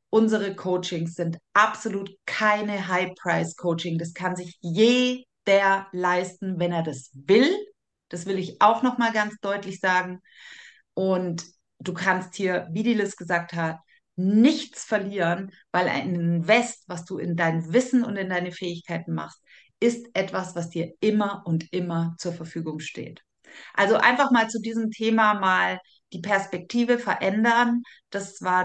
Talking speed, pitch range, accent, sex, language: 145 wpm, 175-215 Hz, German, female, German